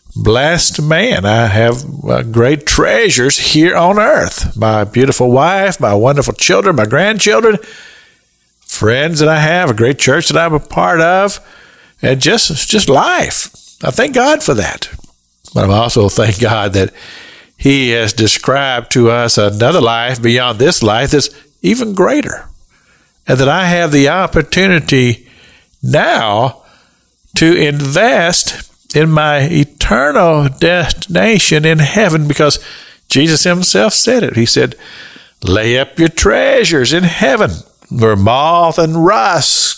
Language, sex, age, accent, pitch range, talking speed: English, male, 50-69, American, 115-165 Hz, 135 wpm